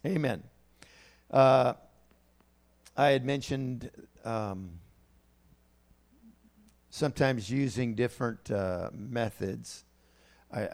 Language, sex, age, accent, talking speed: English, male, 50-69, American, 65 wpm